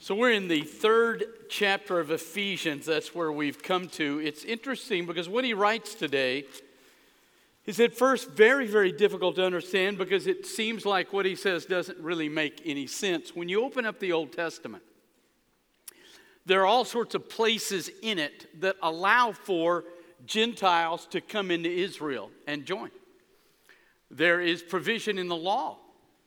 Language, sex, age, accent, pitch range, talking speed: Russian, male, 50-69, American, 170-220 Hz, 160 wpm